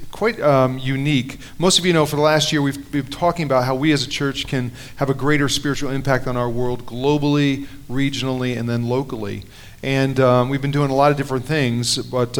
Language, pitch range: English, 125-140 Hz